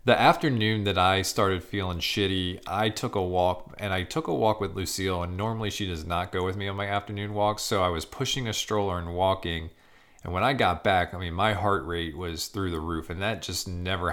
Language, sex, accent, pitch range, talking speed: English, male, American, 85-100 Hz, 240 wpm